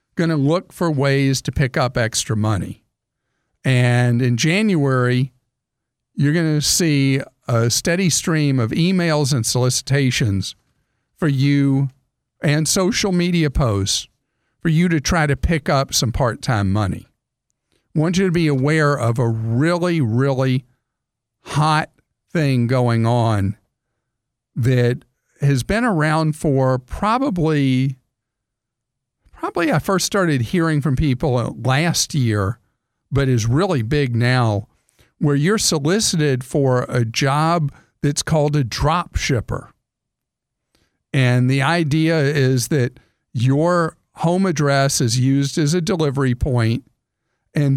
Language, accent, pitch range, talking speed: English, American, 125-155 Hz, 125 wpm